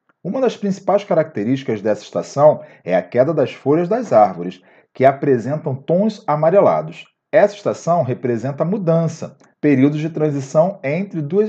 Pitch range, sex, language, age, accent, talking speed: 150-205 Hz, male, Portuguese, 40-59, Brazilian, 135 wpm